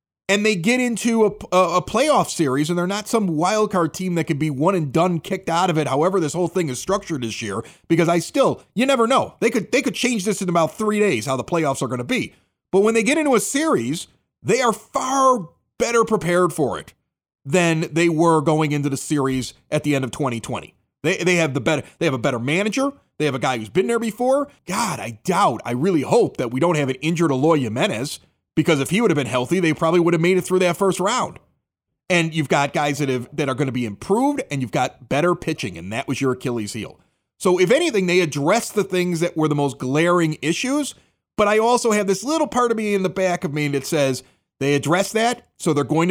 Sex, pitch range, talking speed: male, 145-200 Hz, 240 wpm